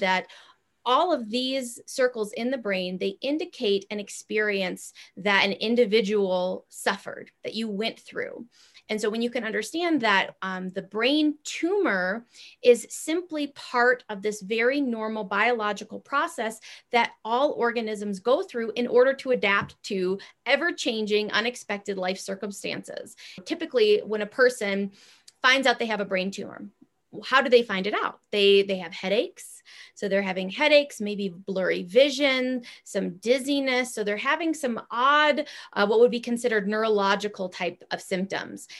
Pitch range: 195-255 Hz